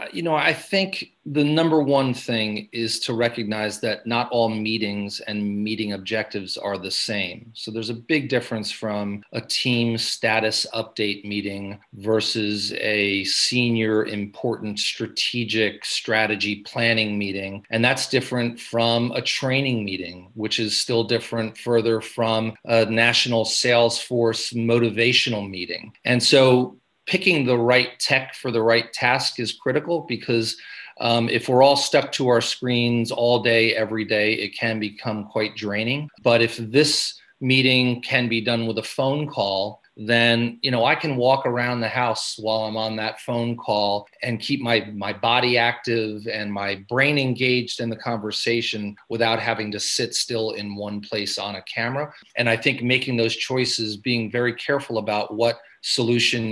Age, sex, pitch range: 40-59, male, 110-120 Hz